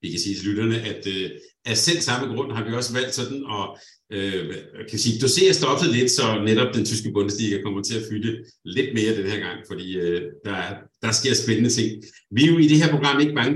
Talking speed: 240 wpm